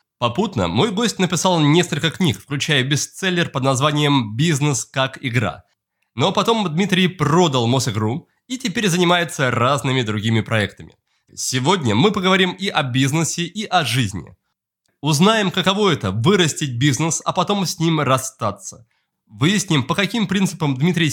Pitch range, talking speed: 130-185 Hz, 135 wpm